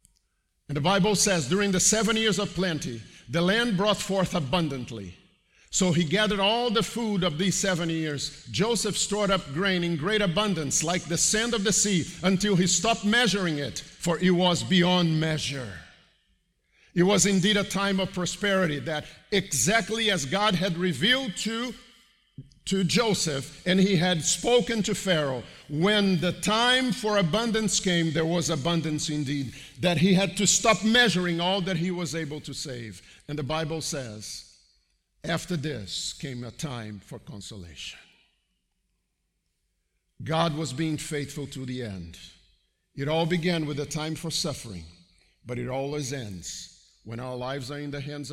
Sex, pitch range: male, 130-195 Hz